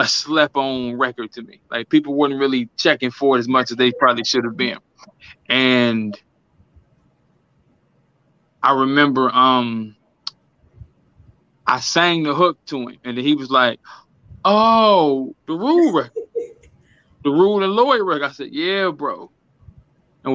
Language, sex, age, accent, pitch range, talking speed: English, male, 20-39, American, 125-150 Hz, 135 wpm